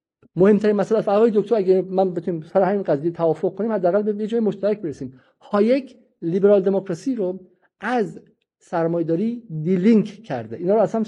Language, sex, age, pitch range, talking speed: Persian, male, 50-69, 160-210 Hz, 165 wpm